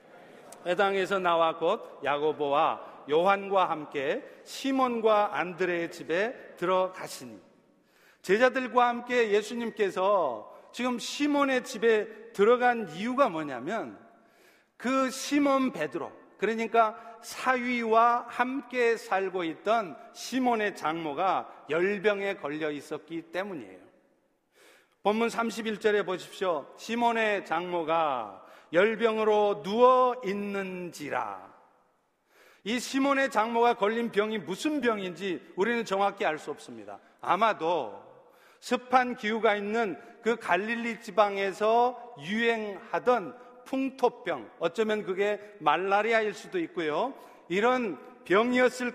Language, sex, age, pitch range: Korean, male, 40-59, 190-245 Hz